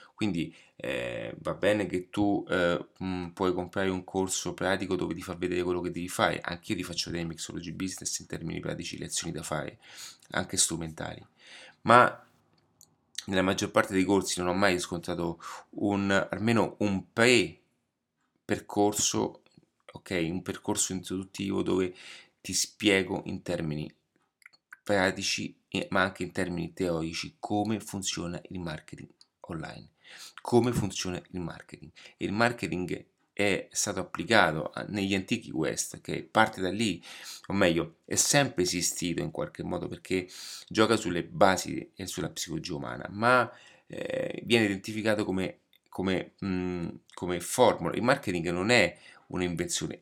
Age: 30-49